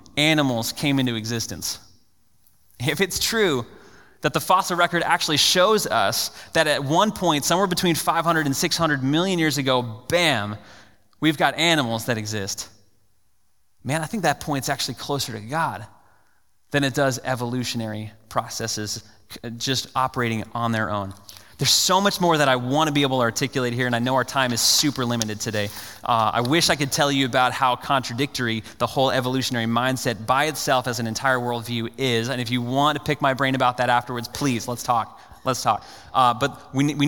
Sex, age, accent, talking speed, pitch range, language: male, 20-39, American, 185 wpm, 120-165 Hz, English